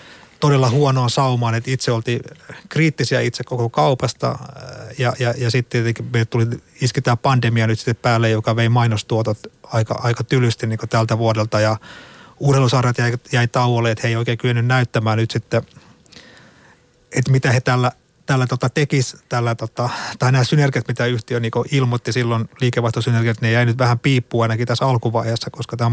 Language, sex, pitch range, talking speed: Finnish, male, 115-130 Hz, 160 wpm